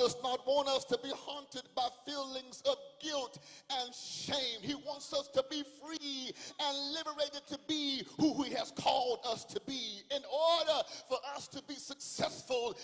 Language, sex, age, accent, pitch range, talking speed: English, male, 40-59, American, 255-290 Hz, 175 wpm